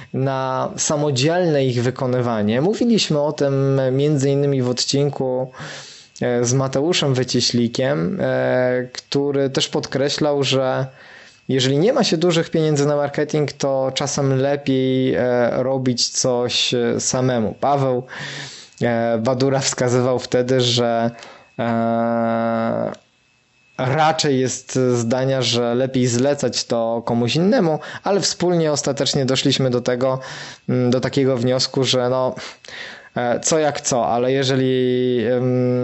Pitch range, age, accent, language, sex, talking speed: 120-140 Hz, 20-39, native, Polish, male, 100 wpm